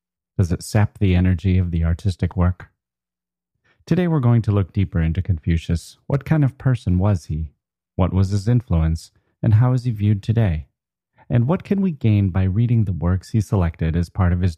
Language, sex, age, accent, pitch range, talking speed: English, male, 30-49, American, 85-105 Hz, 200 wpm